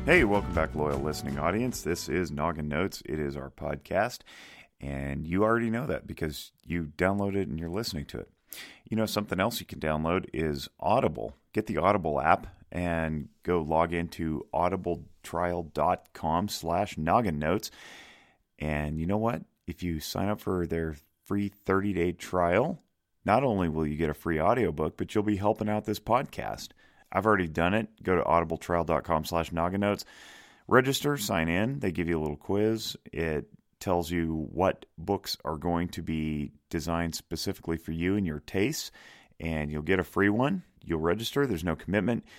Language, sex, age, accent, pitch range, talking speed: English, male, 30-49, American, 75-95 Hz, 175 wpm